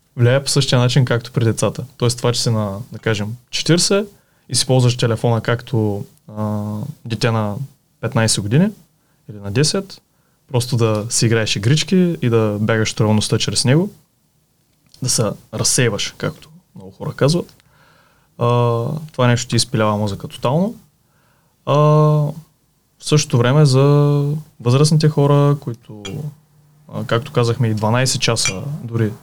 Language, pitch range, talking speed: Bulgarian, 115-150 Hz, 130 wpm